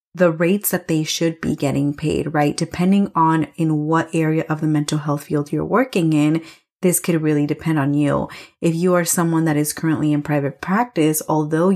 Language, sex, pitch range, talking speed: English, female, 150-180 Hz, 200 wpm